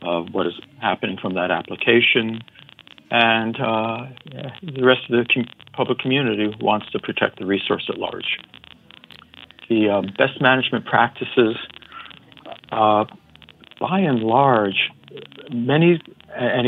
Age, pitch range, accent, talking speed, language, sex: 50-69, 105-130 Hz, American, 125 wpm, English, male